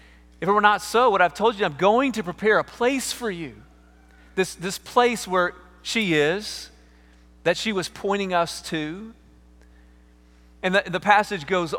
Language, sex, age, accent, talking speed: English, male, 40-59, American, 175 wpm